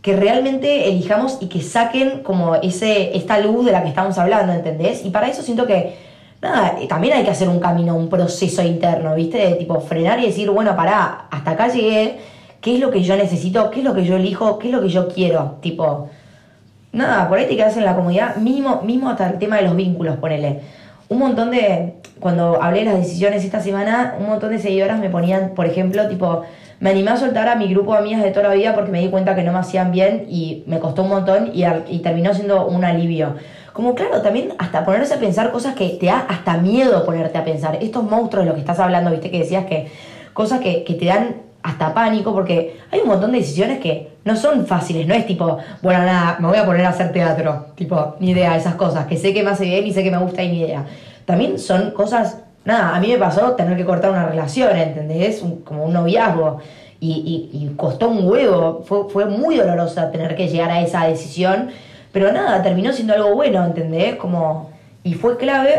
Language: Spanish